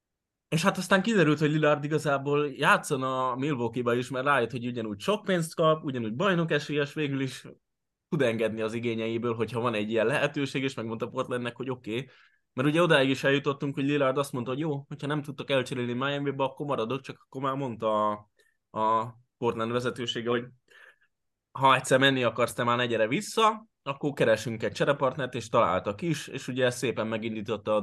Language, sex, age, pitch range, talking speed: Hungarian, male, 20-39, 110-135 Hz, 185 wpm